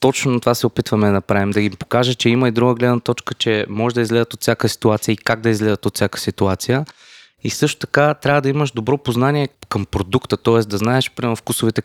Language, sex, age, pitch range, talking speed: Bulgarian, male, 20-39, 105-120 Hz, 220 wpm